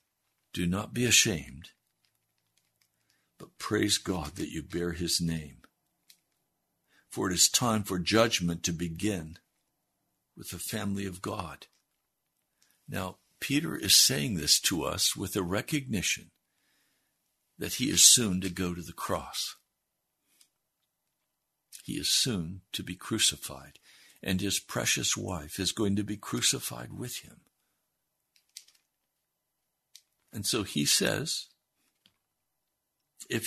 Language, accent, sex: English, American, male